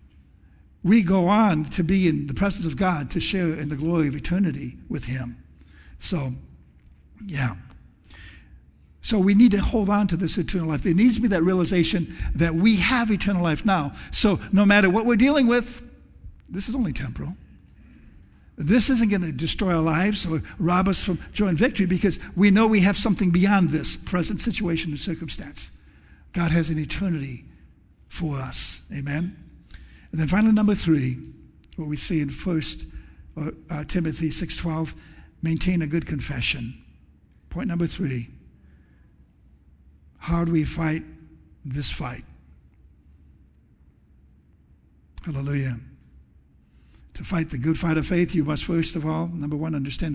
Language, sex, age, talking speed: English, male, 60-79, 155 wpm